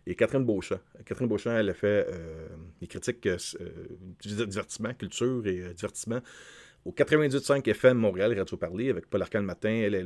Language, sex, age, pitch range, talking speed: French, male, 40-59, 100-130 Hz, 185 wpm